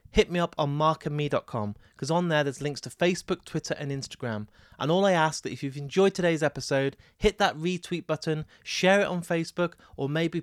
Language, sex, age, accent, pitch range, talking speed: English, male, 30-49, British, 140-175 Hz, 200 wpm